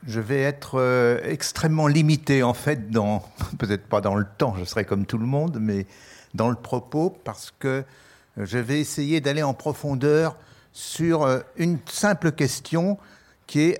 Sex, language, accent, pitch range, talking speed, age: male, French, French, 110-150 Hz, 160 wpm, 60-79